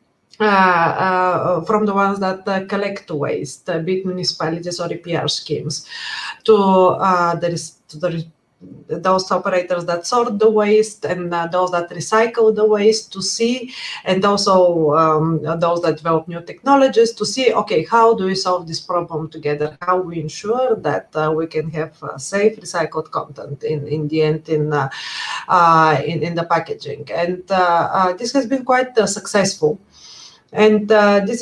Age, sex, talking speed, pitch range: 30-49, female, 170 wpm, 170-220 Hz